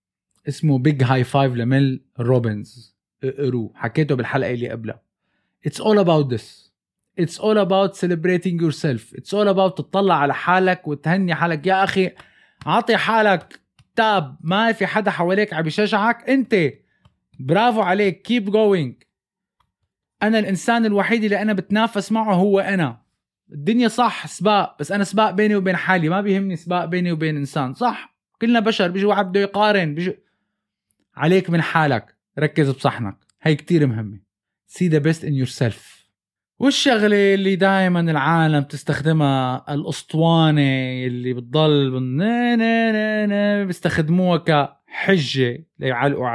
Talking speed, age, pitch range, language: 135 wpm, 20-39, 135-195 Hz, Arabic